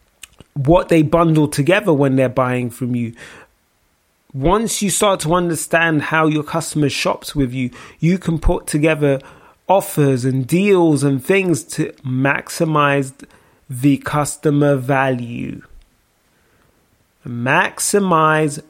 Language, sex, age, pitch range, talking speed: English, male, 20-39, 135-170 Hz, 110 wpm